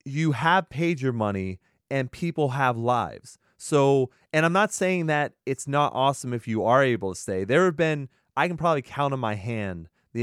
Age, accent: 30-49, American